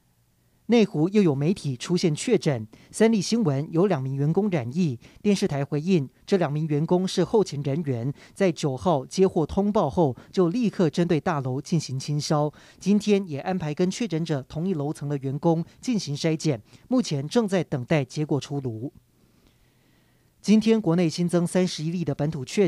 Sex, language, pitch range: male, Chinese, 145-190 Hz